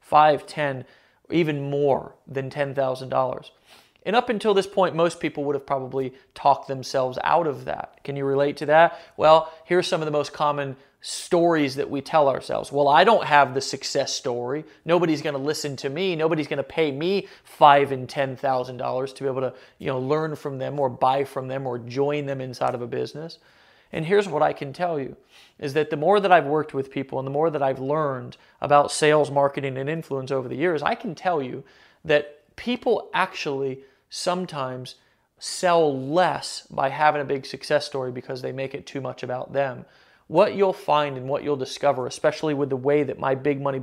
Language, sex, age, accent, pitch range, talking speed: English, male, 40-59, American, 135-155 Hz, 200 wpm